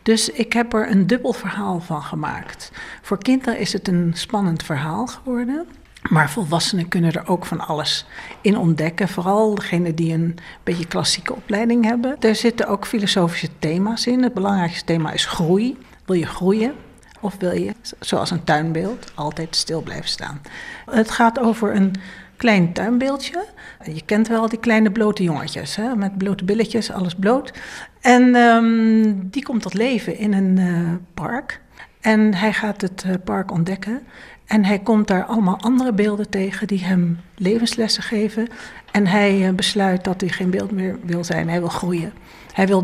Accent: Dutch